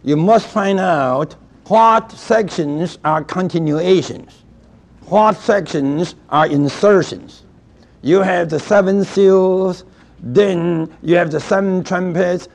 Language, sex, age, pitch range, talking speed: English, male, 60-79, 150-190 Hz, 110 wpm